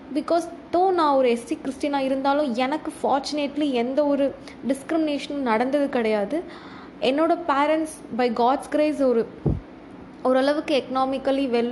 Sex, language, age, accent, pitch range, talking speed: female, Tamil, 20-39, native, 240-295 Hz, 115 wpm